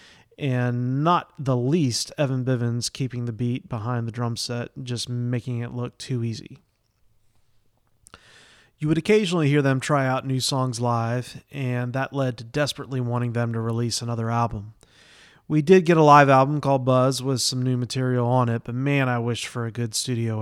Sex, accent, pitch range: male, American, 120-140 Hz